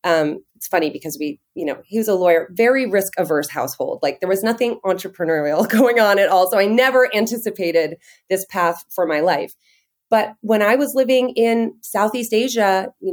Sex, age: female, 30-49